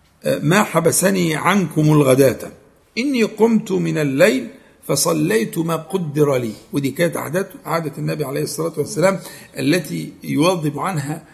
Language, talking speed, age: Arabic, 120 wpm, 50-69